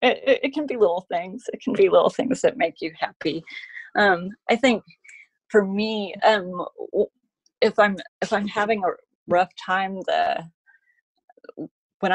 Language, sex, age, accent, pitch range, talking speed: English, female, 30-49, American, 165-220 Hz, 155 wpm